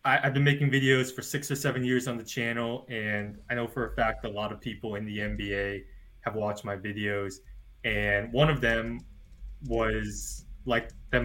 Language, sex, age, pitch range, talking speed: English, male, 20-39, 105-130 Hz, 190 wpm